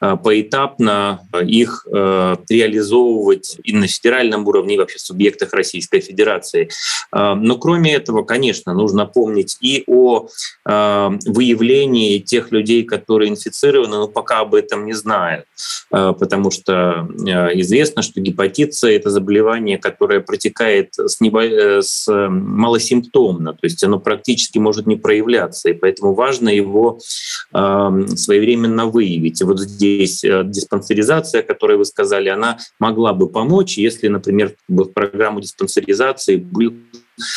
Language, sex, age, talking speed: Russian, male, 20-39, 120 wpm